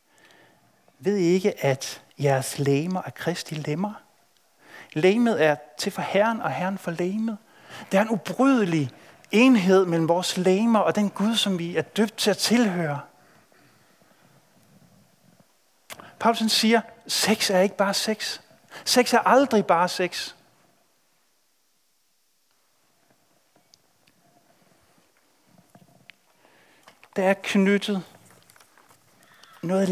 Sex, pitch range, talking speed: male, 145-205 Hz, 105 wpm